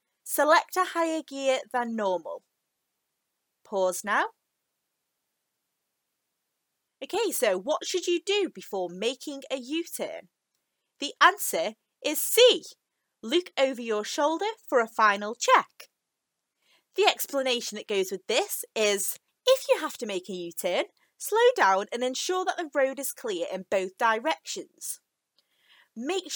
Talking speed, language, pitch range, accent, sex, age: 130 wpm, English, 225-355 Hz, British, female, 30-49